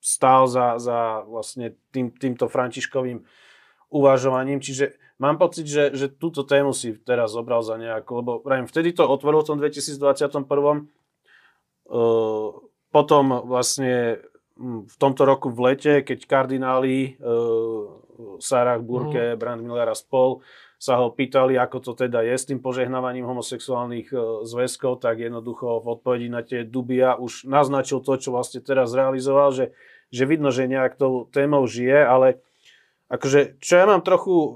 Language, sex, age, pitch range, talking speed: Slovak, male, 30-49, 120-140 Hz, 140 wpm